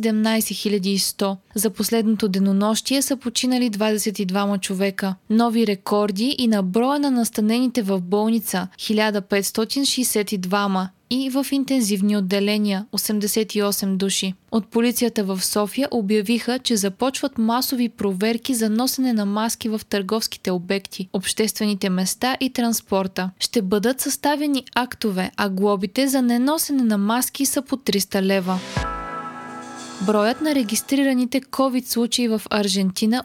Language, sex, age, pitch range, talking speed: Bulgarian, female, 20-39, 205-255 Hz, 115 wpm